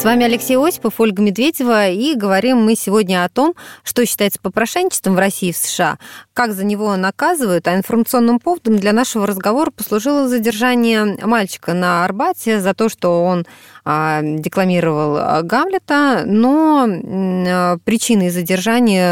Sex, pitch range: female, 170-235 Hz